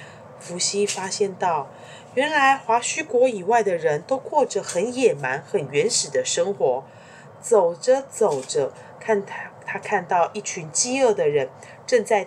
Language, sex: Chinese, female